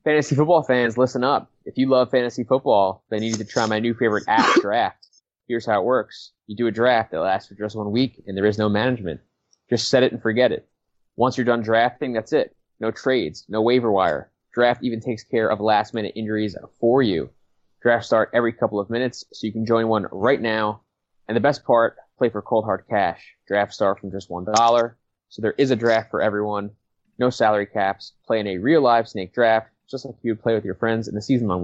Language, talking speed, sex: English, 230 wpm, male